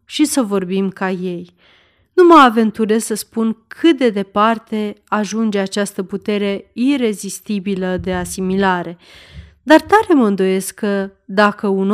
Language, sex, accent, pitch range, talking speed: Romanian, female, native, 195-250 Hz, 130 wpm